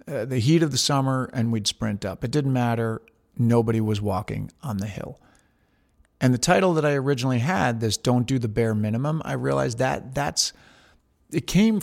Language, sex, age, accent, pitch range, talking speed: English, male, 40-59, American, 110-130 Hz, 190 wpm